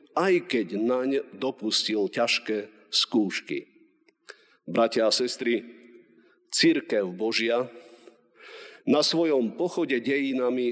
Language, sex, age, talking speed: Slovak, male, 50-69, 85 wpm